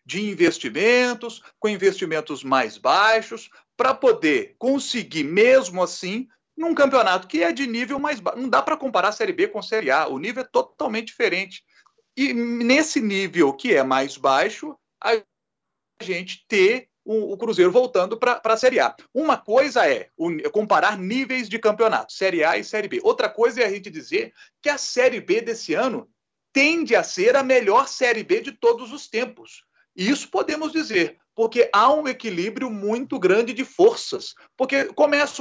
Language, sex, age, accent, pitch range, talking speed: Portuguese, male, 40-59, Brazilian, 195-320 Hz, 170 wpm